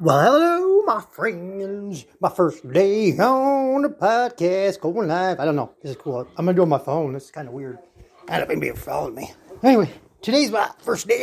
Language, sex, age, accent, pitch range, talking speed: English, male, 30-49, American, 145-210 Hz, 220 wpm